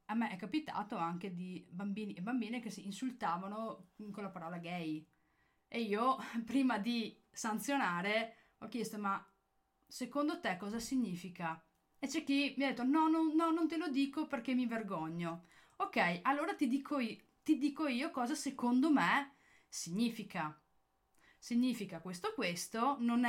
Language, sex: Italian, female